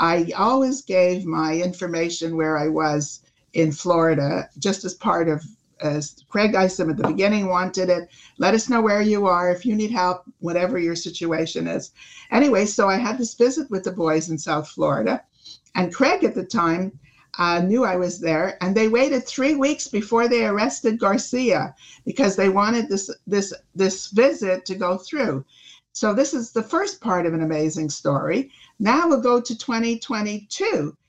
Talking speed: 180 wpm